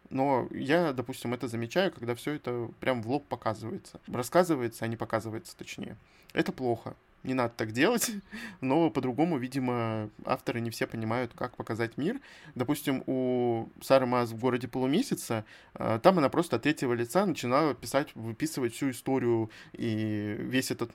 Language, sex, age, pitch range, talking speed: Russian, male, 20-39, 115-145 Hz, 155 wpm